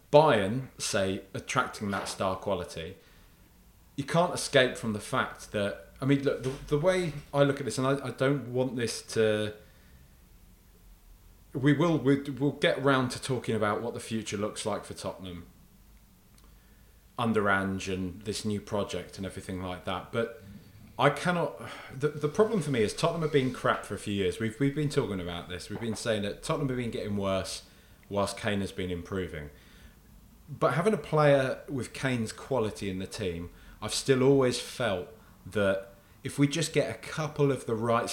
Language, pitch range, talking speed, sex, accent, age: English, 95-135 Hz, 185 wpm, male, British, 30-49